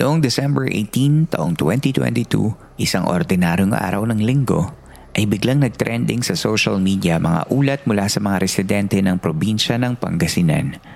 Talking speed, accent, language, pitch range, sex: 140 wpm, native, Filipino, 95-125 Hz, male